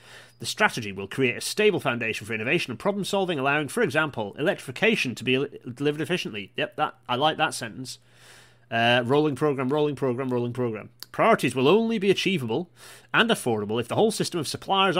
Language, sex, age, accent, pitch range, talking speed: English, male, 30-49, British, 120-175 Hz, 180 wpm